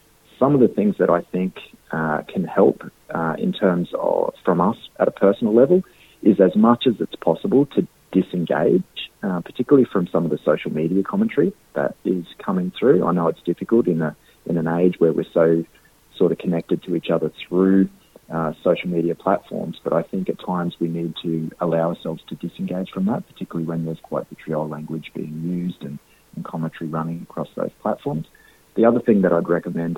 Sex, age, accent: male, 30-49, Australian